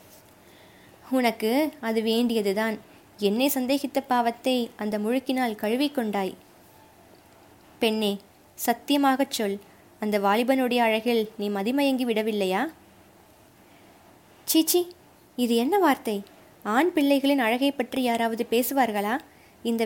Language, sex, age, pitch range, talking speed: Tamil, female, 20-39, 215-255 Hz, 90 wpm